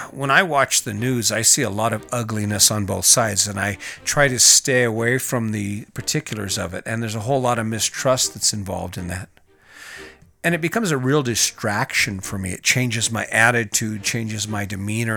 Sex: male